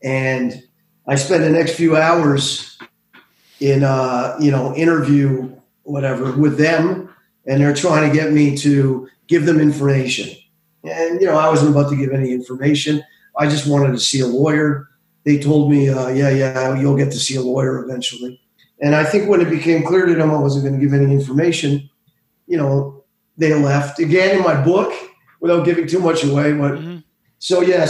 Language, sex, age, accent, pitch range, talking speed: English, male, 40-59, American, 135-165 Hz, 185 wpm